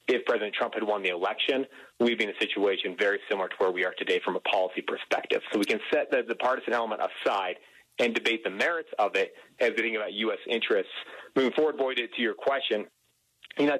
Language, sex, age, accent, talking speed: English, male, 30-49, American, 220 wpm